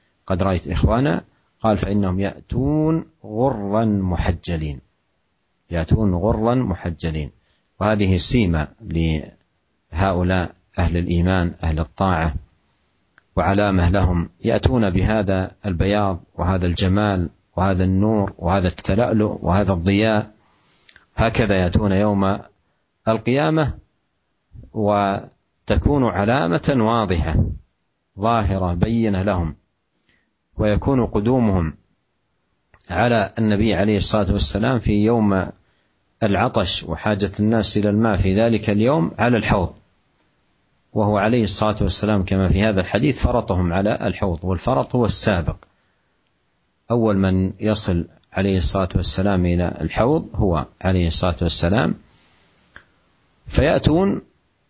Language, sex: Indonesian, male